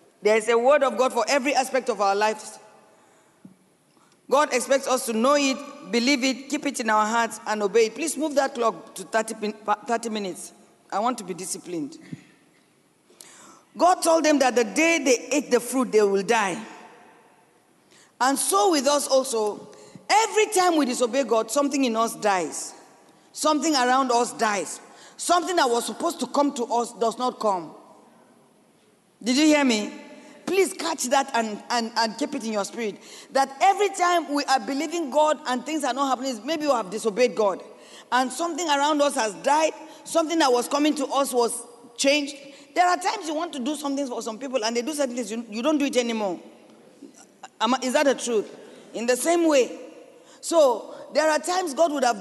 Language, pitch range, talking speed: English, 235-305 Hz, 190 wpm